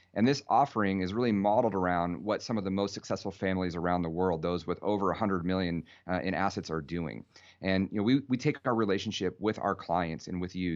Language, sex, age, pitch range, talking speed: English, male, 30-49, 90-115 Hz, 230 wpm